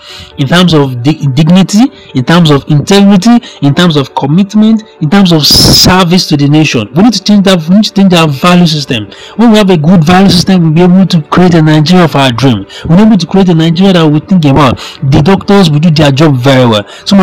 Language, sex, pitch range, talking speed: English, male, 150-190 Hz, 240 wpm